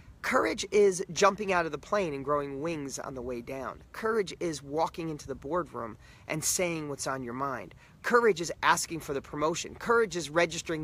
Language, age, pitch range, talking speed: English, 30-49, 155-210 Hz, 195 wpm